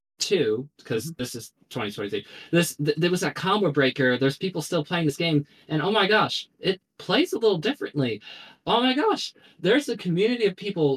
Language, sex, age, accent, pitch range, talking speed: English, male, 20-39, American, 125-150 Hz, 180 wpm